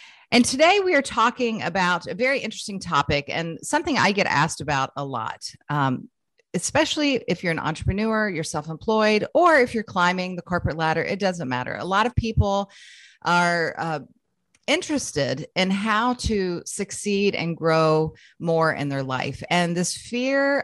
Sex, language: female, English